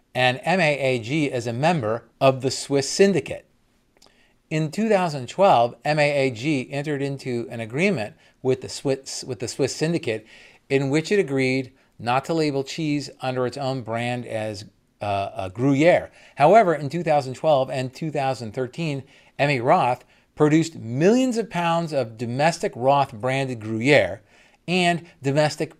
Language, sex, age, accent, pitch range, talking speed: English, male, 40-59, American, 115-150 Hz, 135 wpm